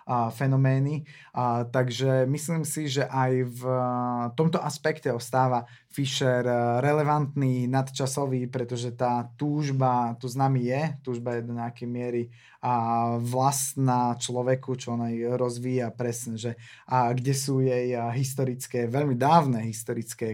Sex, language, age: male, Slovak, 20-39